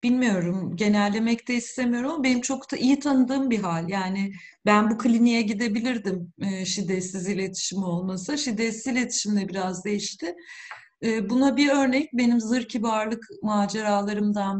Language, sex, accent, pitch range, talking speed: Turkish, female, native, 195-265 Hz, 125 wpm